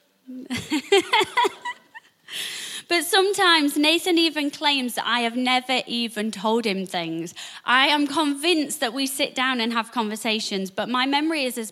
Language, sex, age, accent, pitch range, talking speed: English, female, 20-39, British, 220-300 Hz, 145 wpm